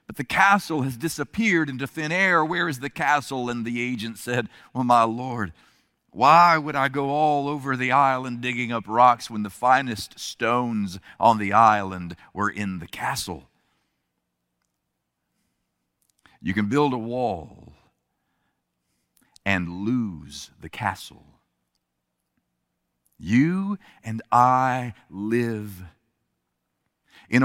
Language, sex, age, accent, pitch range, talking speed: English, male, 50-69, American, 105-145 Hz, 120 wpm